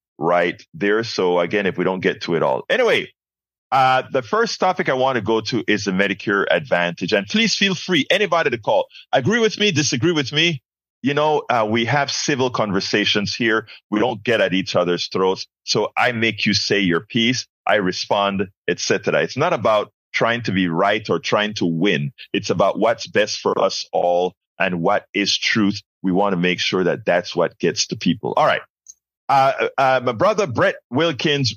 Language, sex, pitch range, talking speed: English, male, 100-165 Hz, 200 wpm